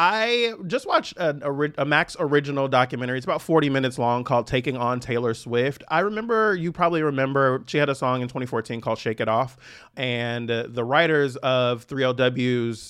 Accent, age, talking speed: American, 30-49, 180 wpm